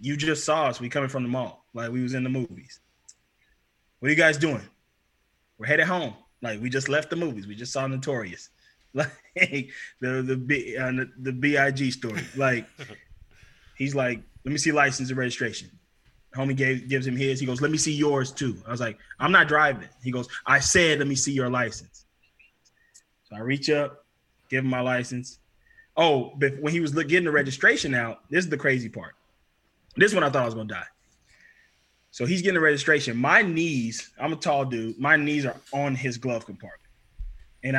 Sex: male